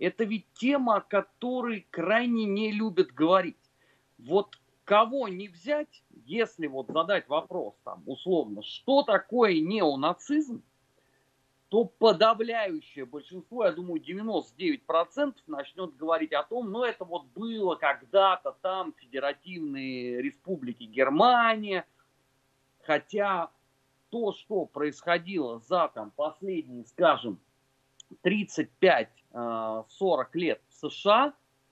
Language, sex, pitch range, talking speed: Russian, male, 140-225 Hz, 100 wpm